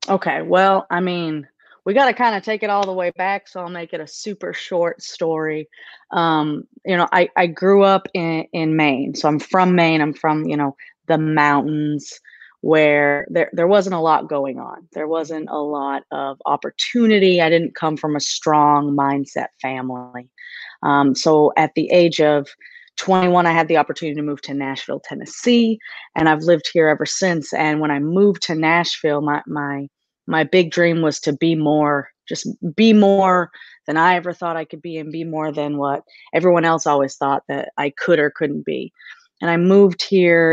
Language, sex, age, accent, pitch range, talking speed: English, female, 30-49, American, 145-175 Hz, 195 wpm